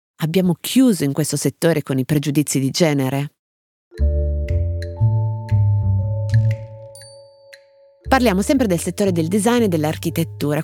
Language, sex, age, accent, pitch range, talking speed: Italian, female, 30-49, native, 140-205 Hz, 100 wpm